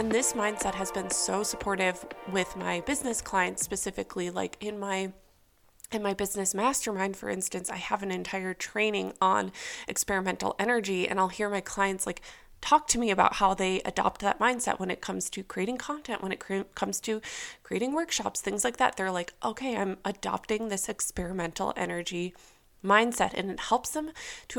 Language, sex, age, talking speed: English, female, 20-39, 180 wpm